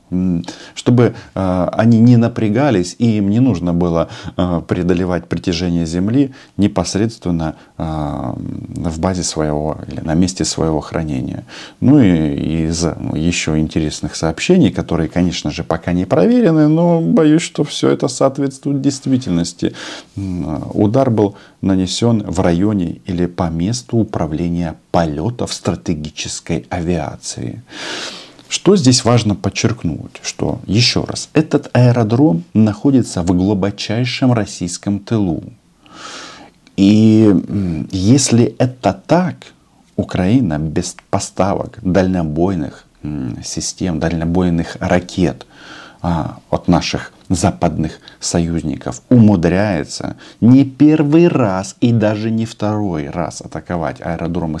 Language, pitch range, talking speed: Russian, 85-115 Hz, 100 wpm